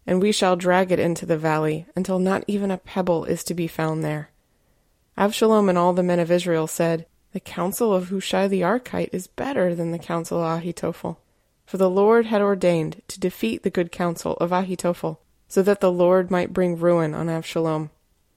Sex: female